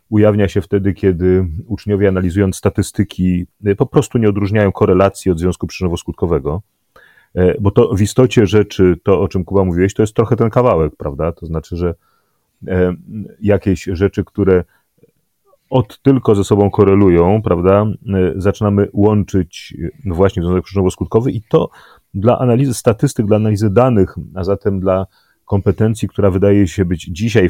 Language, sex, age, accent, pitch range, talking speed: Polish, male, 30-49, native, 90-110 Hz, 145 wpm